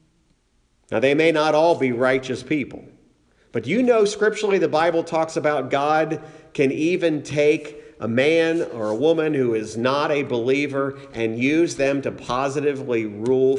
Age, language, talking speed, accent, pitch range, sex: 50-69, English, 160 wpm, American, 130-170 Hz, male